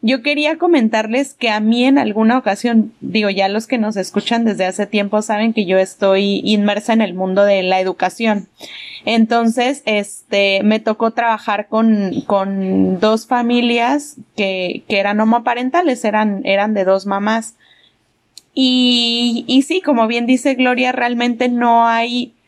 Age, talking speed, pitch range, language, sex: 20-39, 150 wpm, 205-245 Hz, Spanish, female